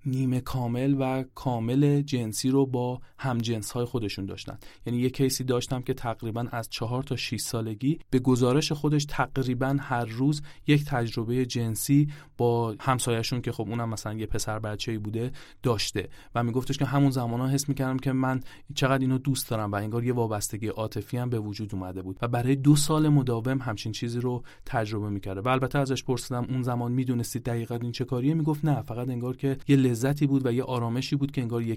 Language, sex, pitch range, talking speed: Persian, male, 115-140 Hz, 195 wpm